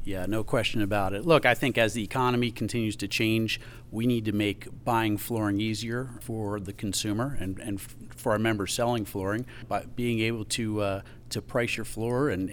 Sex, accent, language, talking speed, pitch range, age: male, American, English, 195 wpm, 105-120 Hz, 40-59